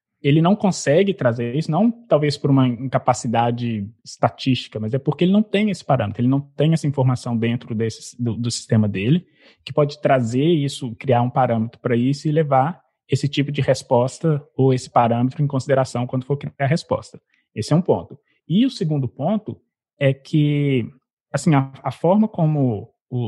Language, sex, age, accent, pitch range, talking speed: Portuguese, male, 20-39, Brazilian, 125-155 Hz, 185 wpm